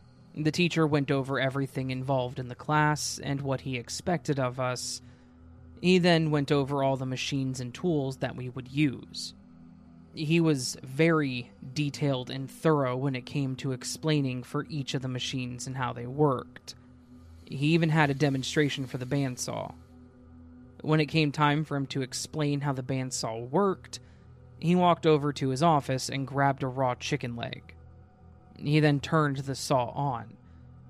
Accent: American